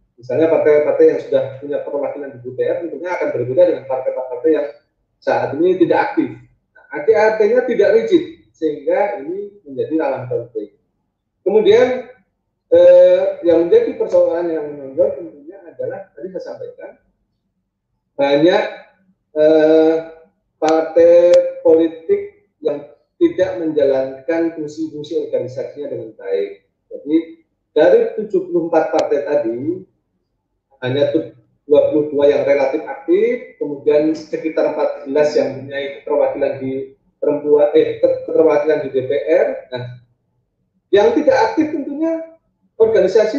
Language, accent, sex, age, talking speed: Indonesian, native, male, 30-49, 110 wpm